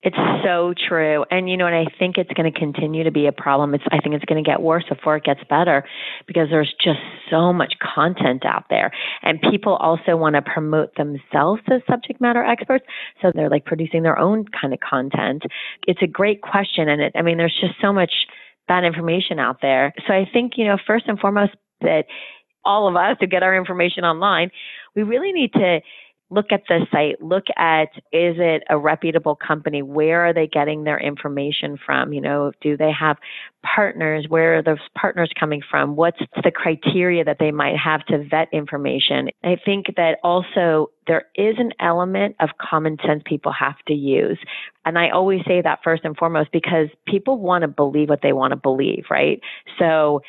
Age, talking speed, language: 30-49, 200 wpm, English